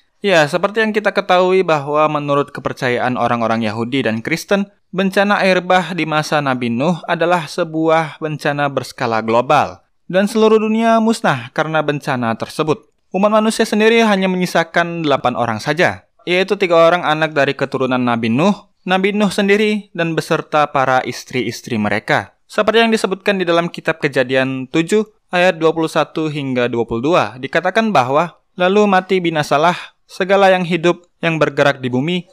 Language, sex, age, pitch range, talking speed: Indonesian, male, 20-39, 140-190 Hz, 145 wpm